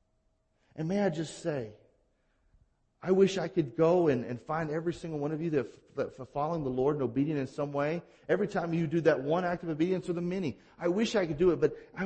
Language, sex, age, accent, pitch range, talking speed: English, male, 40-59, American, 130-195 Hz, 255 wpm